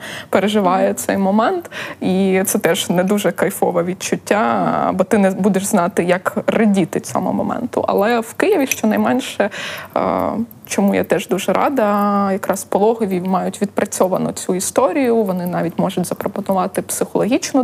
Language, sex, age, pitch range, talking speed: Ukrainian, female, 20-39, 185-215 Hz, 135 wpm